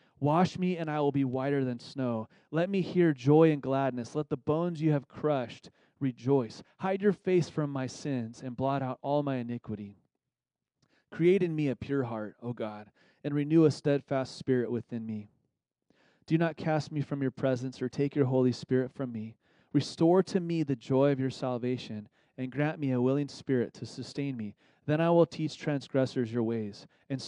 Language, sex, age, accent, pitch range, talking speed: English, male, 30-49, American, 120-150 Hz, 195 wpm